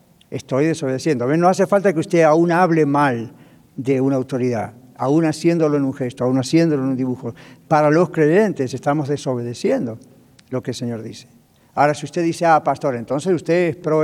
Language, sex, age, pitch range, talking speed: English, male, 60-79, 135-170 Hz, 190 wpm